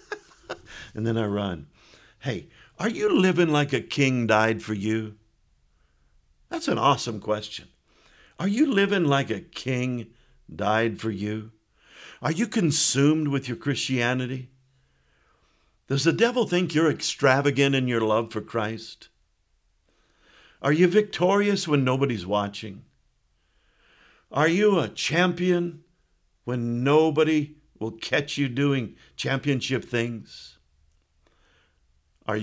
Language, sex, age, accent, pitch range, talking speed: English, male, 50-69, American, 105-150 Hz, 115 wpm